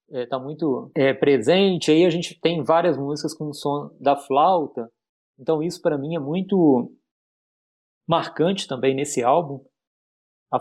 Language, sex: Portuguese, male